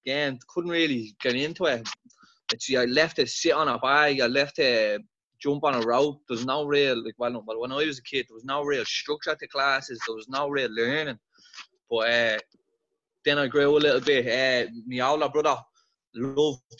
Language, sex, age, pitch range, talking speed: English, male, 20-39, 125-145 Hz, 195 wpm